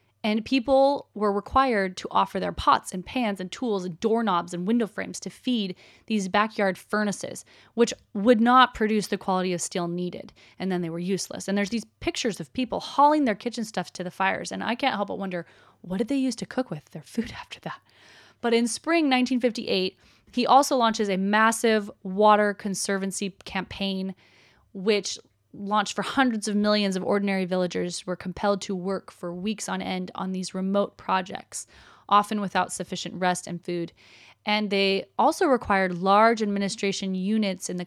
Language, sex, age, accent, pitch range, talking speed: English, female, 20-39, American, 185-230 Hz, 180 wpm